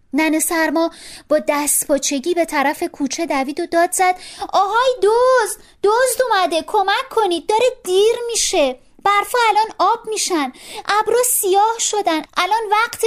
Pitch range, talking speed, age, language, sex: 245-370 Hz, 135 wpm, 30-49, Persian, female